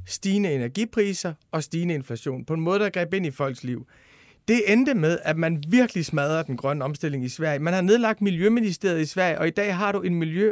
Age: 30-49